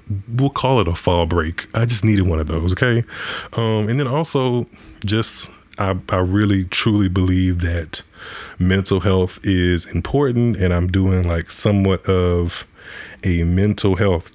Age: 20-39